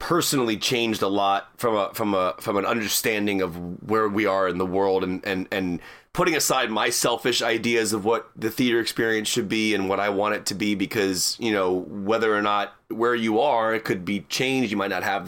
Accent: American